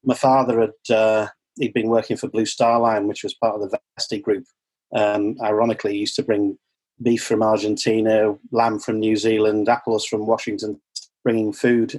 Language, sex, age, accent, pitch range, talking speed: English, male, 30-49, British, 105-120 Hz, 180 wpm